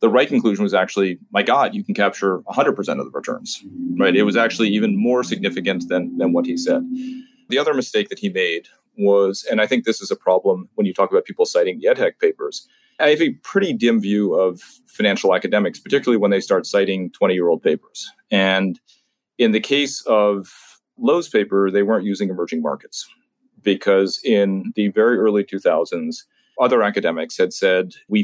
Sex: male